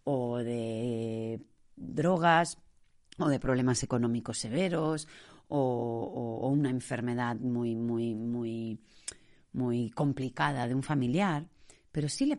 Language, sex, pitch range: Spanish, female, 115-170 Hz